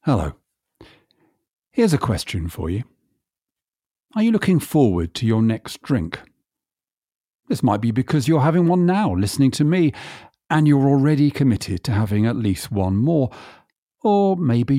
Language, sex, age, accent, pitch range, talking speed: English, male, 50-69, British, 105-165 Hz, 150 wpm